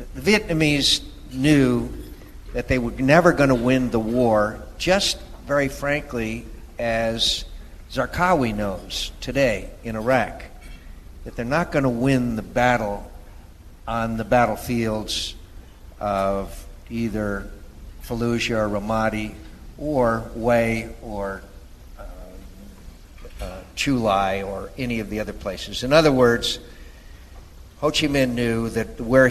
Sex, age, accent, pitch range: male, 50-69, American, 100-120 Hz